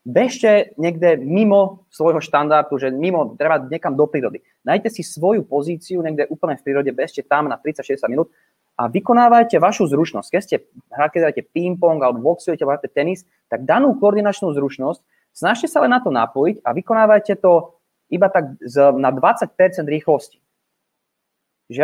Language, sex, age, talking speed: Slovak, male, 20-39, 150 wpm